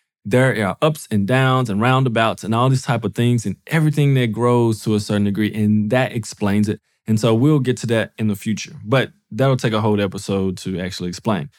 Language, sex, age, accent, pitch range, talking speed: English, male, 20-39, American, 110-145 Hz, 225 wpm